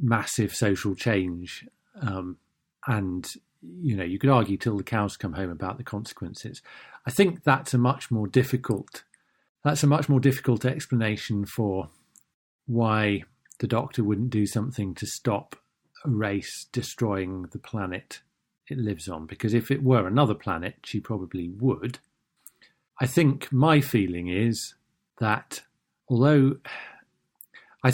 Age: 40-59